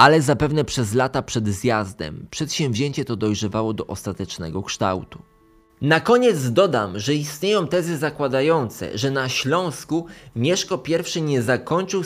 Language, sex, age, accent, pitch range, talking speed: Polish, male, 20-39, native, 115-150 Hz, 130 wpm